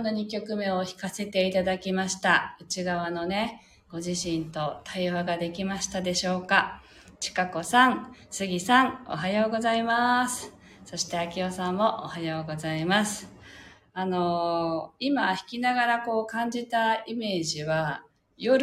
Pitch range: 160-225 Hz